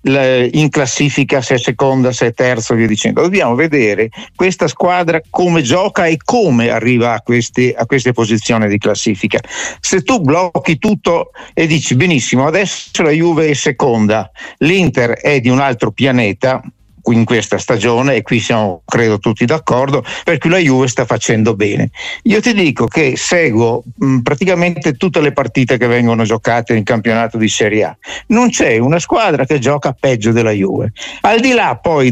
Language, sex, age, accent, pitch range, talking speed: Italian, male, 60-79, native, 120-160 Hz, 165 wpm